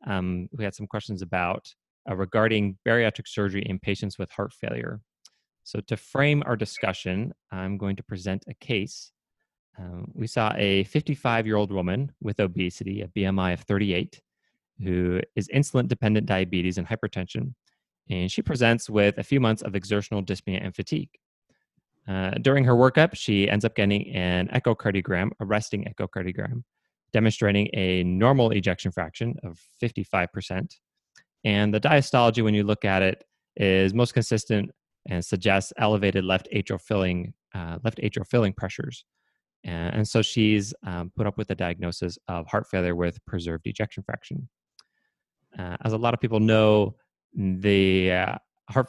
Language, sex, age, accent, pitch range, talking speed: English, male, 20-39, American, 95-115 Hz, 150 wpm